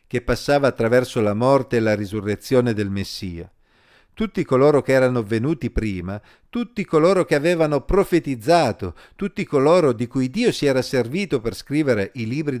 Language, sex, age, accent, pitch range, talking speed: Italian, male, 50-69, native, 105-160 Hz, 155 wpm